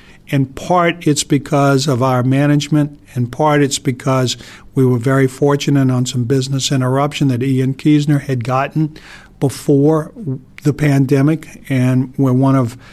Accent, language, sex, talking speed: American, English, male, 145 wpm